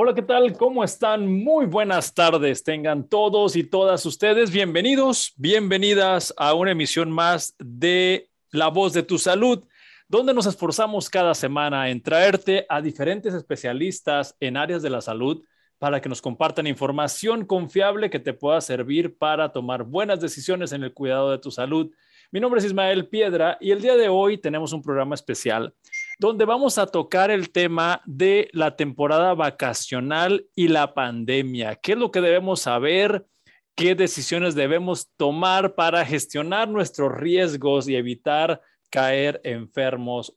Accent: Mexican